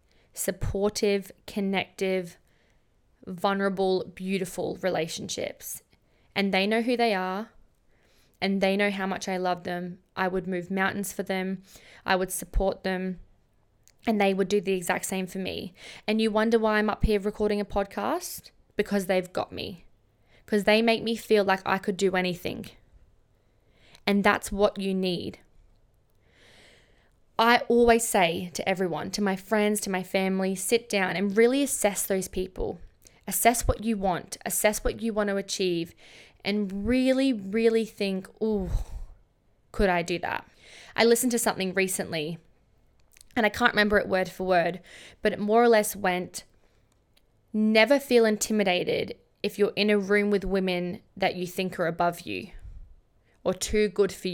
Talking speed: 160 wpm